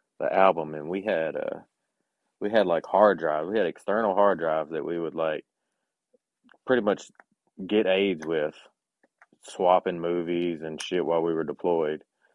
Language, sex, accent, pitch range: English, male, American, 80-95 Hz